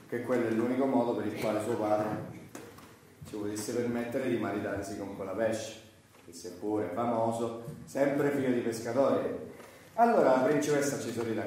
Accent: native